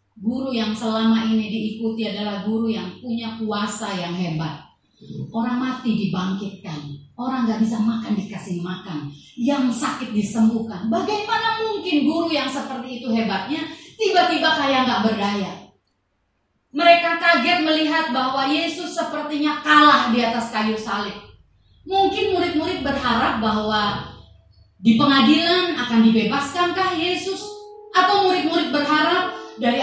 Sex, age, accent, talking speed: female, 30-49, native, 120 wpm